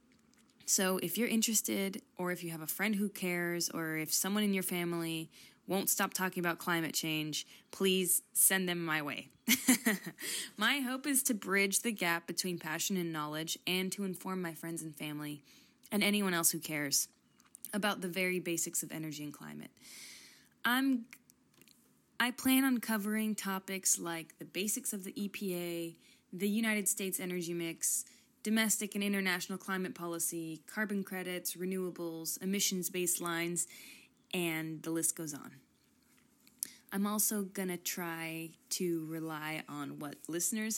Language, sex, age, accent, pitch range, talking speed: English, female, 20-39, American, 170-215 Hz, 150 wpm